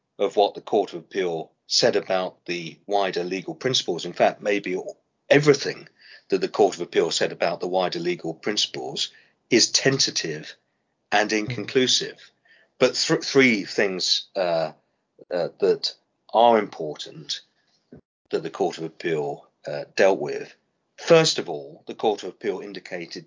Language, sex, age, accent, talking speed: English, male, 40-59, British, 140 wpm